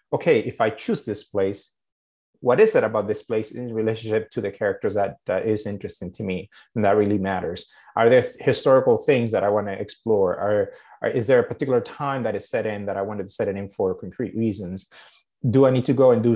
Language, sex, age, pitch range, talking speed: English, male, 30-49, 105-135 Hz, 225 wpm